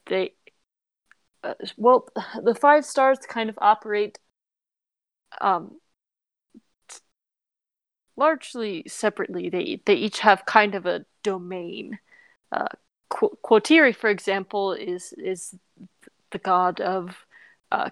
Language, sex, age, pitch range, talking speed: English, female, 20-39, 185-225 Hz, 100 wpm